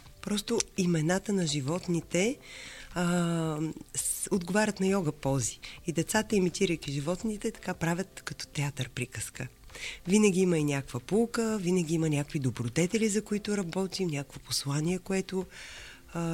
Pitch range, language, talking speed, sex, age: 150-195 Hz, Bulgarian, 130 wpm, female, 30-49